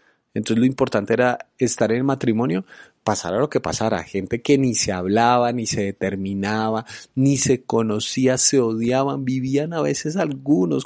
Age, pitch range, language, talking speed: 30-49, 100-125 Hz, Spanish, 160 wpm